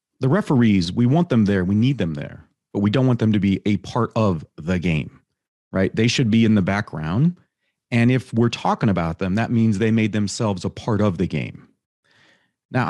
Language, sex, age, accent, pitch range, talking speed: English, male, 40-59, American, 100-135 Hz, 215 wpm